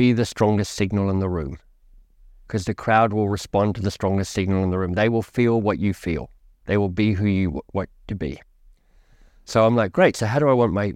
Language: English